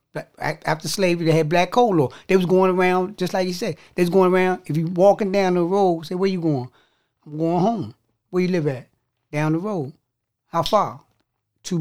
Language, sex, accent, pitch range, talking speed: English, male, American, 140-180 Hz, 215 wpm